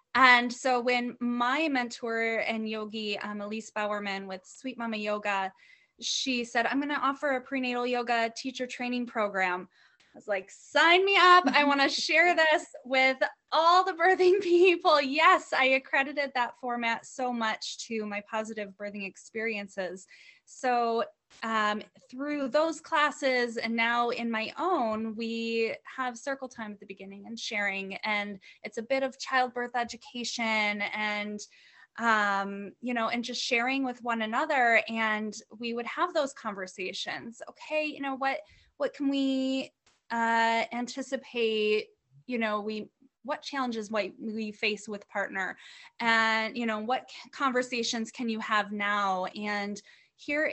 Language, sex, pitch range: English, female, 215-265 Hz